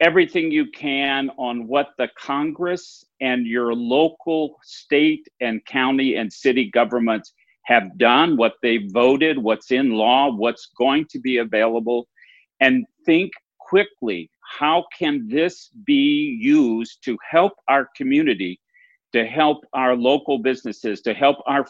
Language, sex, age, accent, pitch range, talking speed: English, male, 50-69, American, 120-180 Hz, 135 wpm